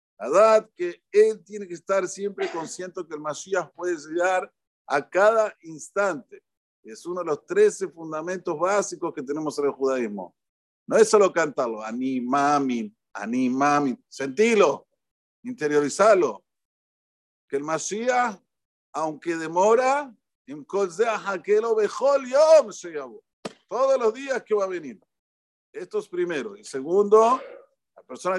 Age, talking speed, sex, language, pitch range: 50-69, 115 wpm, male, Spanish, 145-220 Hz